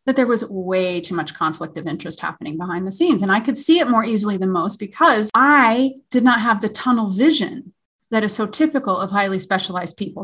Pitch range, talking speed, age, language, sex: 190-275 Hz, 225 wpm, 30-49, English, female